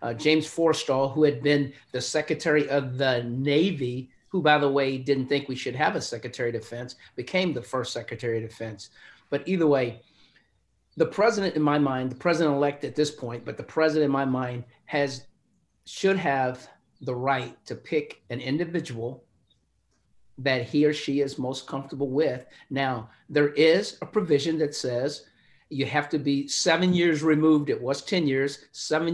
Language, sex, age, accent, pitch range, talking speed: English, male, 50-69, American, 130-155 Hz, 175 wpm